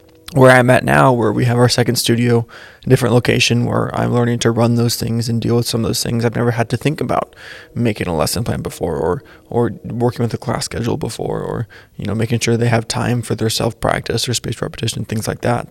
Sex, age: male, 20-39